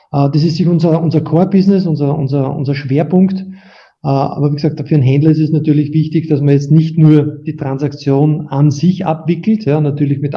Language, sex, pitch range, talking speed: German, male, 135-155 Hz, 195 wpm